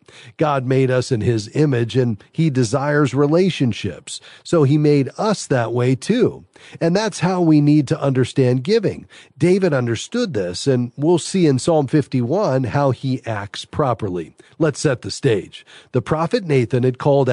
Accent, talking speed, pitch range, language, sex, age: American, 165 wpm, 115-150 Hz, English, male, 40-59